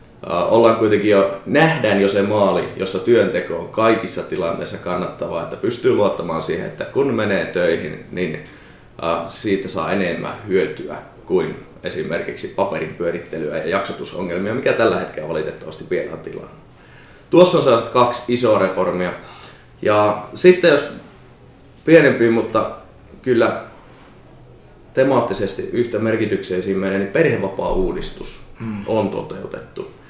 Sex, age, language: male, 20-39, Finnish